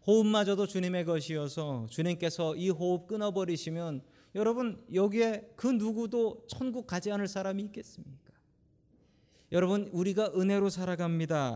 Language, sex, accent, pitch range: Korean, male, native, 130-190 Hz